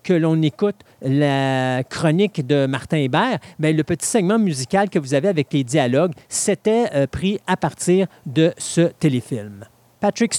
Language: French